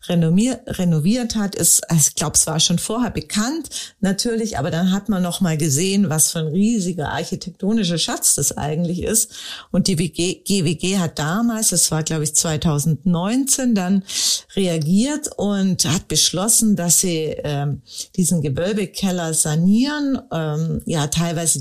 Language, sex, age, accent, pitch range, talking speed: German, female, 50-69, German, 165-215 Hz, 145 wpm